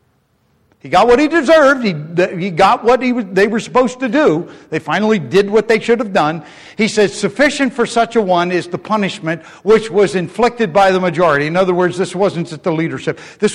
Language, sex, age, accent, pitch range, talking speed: English, male, 50-69, American, 165-235 Hz, 215 wpm